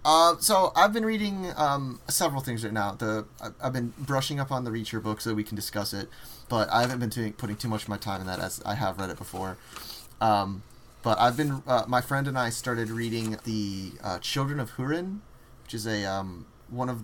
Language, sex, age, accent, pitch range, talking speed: English, male, 30-49, American, 105-125 Hz, 225 wpm